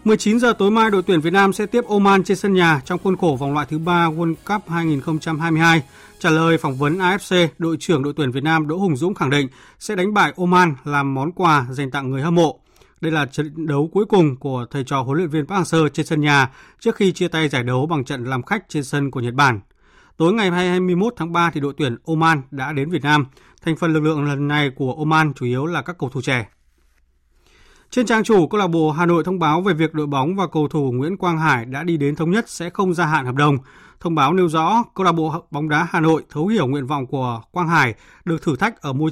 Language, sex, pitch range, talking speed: Vietnamese, male, 145-180 Hz, 255 wpm